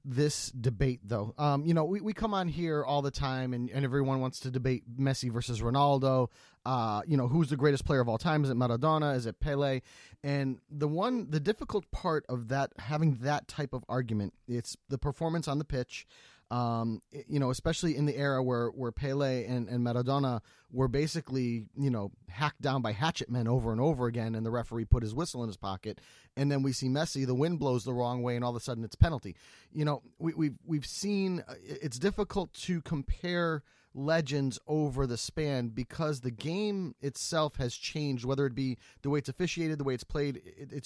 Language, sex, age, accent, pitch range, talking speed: English, male, 30-49, American, 120-150 Hz, 215 wpm